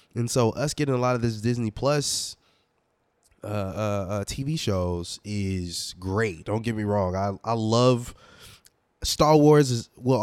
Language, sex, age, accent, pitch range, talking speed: English, male, 20-39, American, 100-140 Hz, 165 wpm